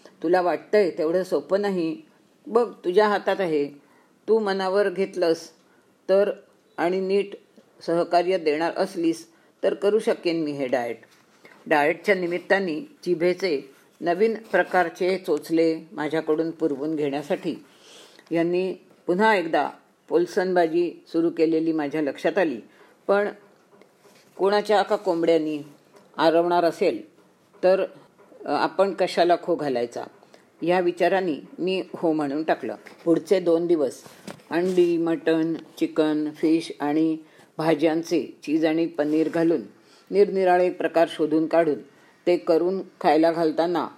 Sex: female